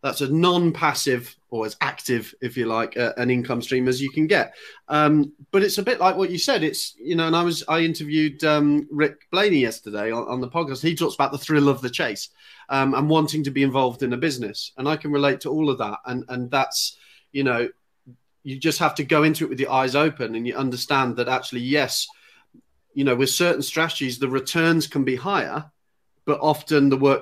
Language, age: English, 30-49